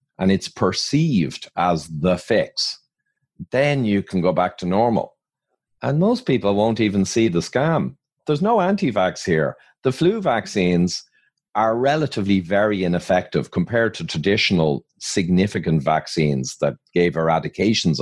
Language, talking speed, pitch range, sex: English, 135 wpm, 90-140 Hz, male